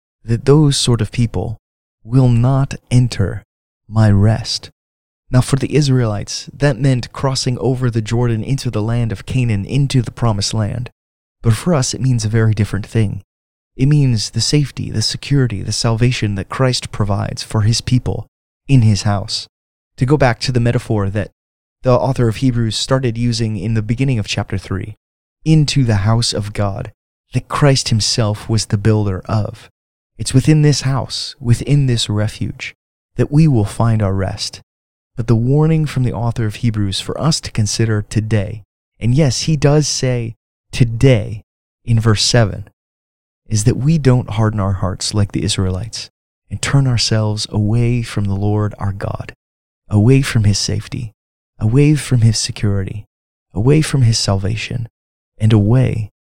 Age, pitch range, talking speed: 20-39, 105-125 Hz, 165 wpm